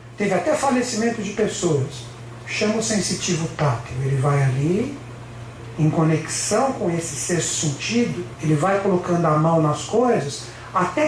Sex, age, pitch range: male, 60-79, 165-240 Hz